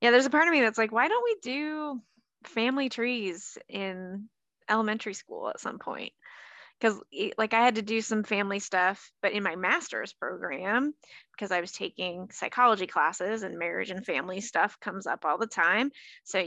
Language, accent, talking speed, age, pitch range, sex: English, American, 185 wpm, 20-39, 195-255 Hz, female